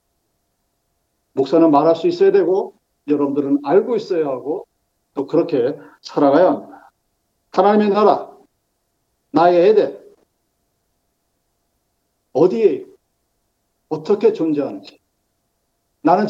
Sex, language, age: male, Korean, 50-69